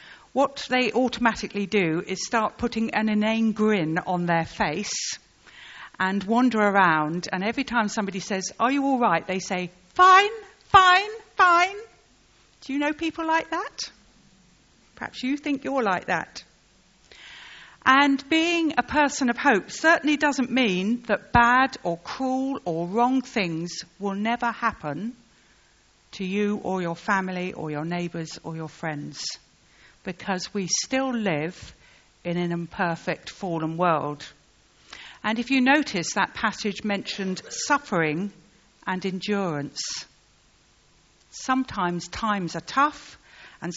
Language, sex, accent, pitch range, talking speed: English, female, British, 175-255 Hz, 130 wpm